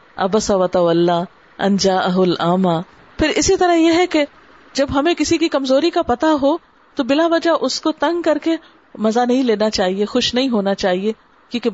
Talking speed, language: 180 wpm, Urdu